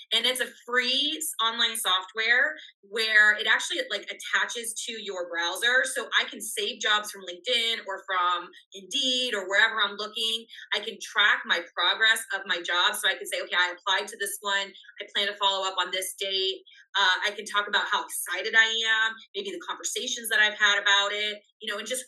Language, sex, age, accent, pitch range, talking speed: English, female, 20-39, American, 195-255 Hz, 205 wpm